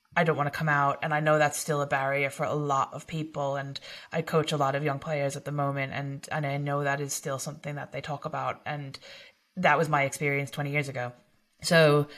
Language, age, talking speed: English, 30-49, 245 wpm